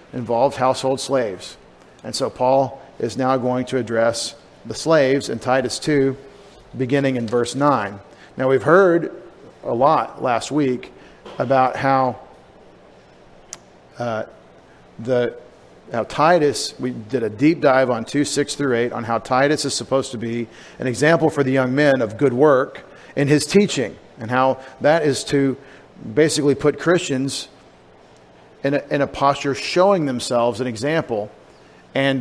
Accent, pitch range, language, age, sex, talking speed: American, 125-145 Hz, English, 40-59, male, 145 wpm